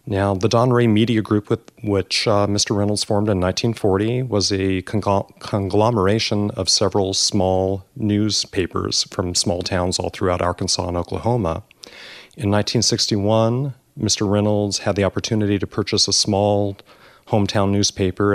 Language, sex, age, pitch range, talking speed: English, male, 30-49, 95-110 Hz, 135 wpm